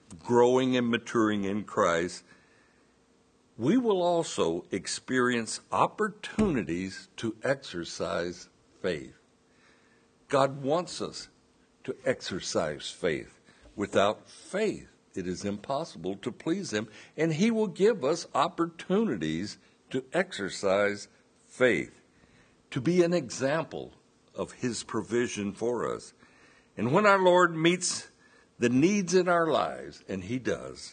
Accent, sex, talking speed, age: American, male, 115 wpm, 60-79